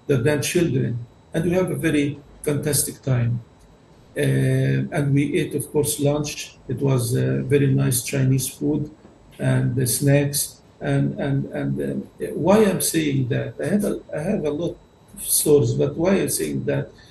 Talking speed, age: 160 wpm, 50-69